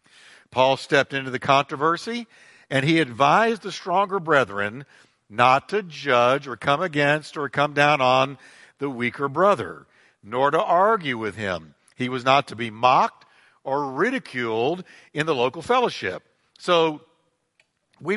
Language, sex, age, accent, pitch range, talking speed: English, male, 60-79, American, 125-165 Hz, 140 wpm